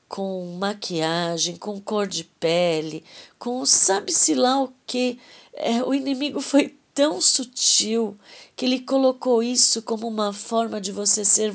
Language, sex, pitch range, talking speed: Portuguese, female, 195-245 Hz, 140 wpm